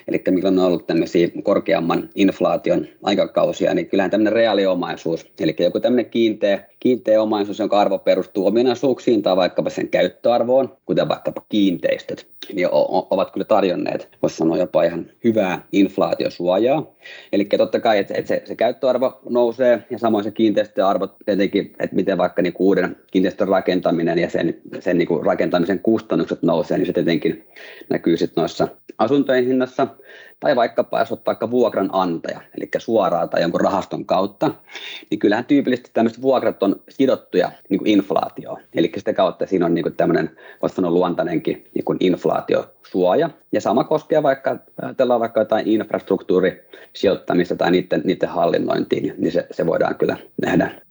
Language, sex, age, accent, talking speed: Finnish, male, 30-49, native, 145 wpm